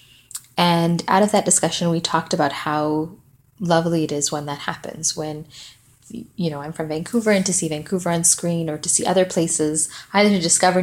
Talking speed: 195 wpm